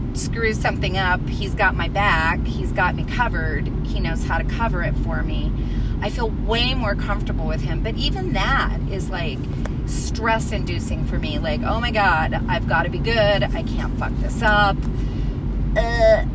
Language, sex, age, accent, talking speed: English, female, 30-49, American, 185 wpm